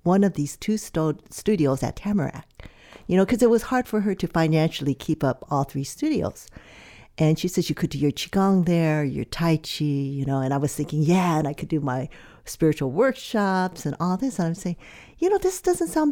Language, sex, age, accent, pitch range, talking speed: English, female, 50-69, American, 145-215 Hz, 220 wpm